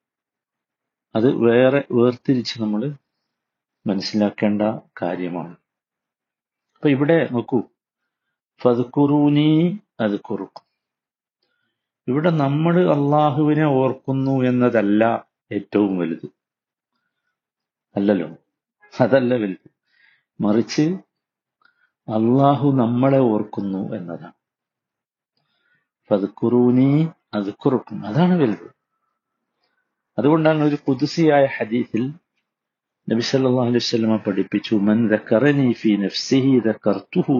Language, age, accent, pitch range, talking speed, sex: Malayalam, 50-69, native, 110-145 Hz, 75 wpm, male